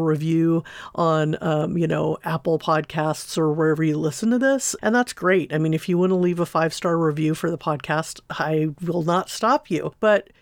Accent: American